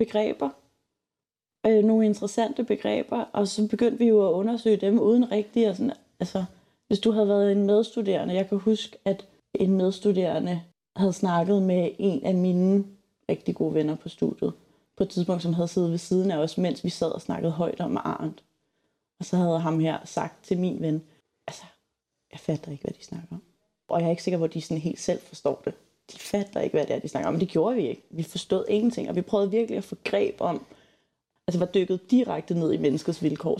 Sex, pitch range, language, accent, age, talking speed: female, 165-205 Hz, Danish, native, 30-49, 205 wpm